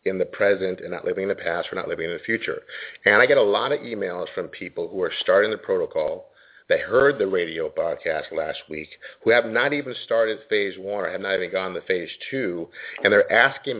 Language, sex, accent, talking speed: English, male, American, 235 wpm